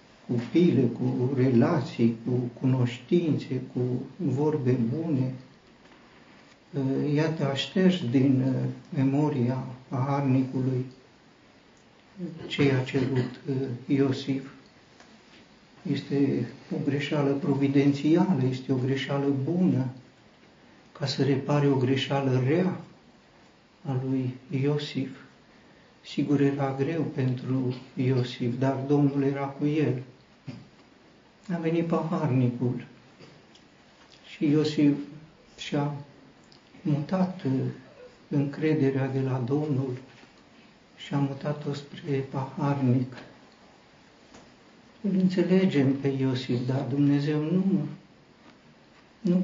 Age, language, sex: 60-79, Romanian, male